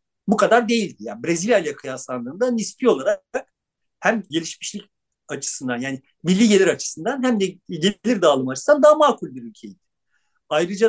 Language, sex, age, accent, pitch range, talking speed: Turkish, male, 50-69, native, 160-235 Hz, 145 wpm